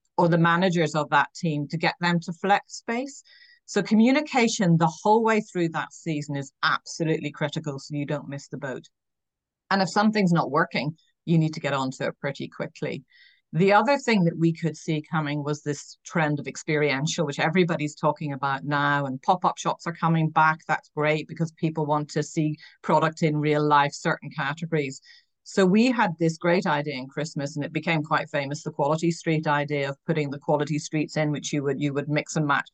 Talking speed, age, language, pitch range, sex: 200 wpm, 40-59, English, 150-180 Hz, female